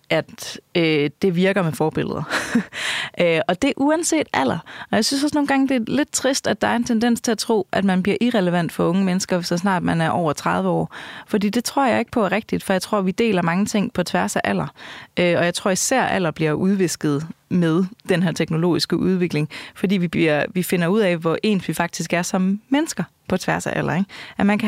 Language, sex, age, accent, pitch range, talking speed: Danish, female, 30-49, native, 175-215 Hz, 235 wpm